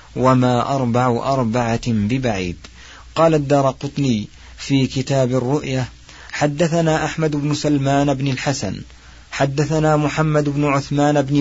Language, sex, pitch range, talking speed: Arabic, male, 120-145 Hz, 105 wpm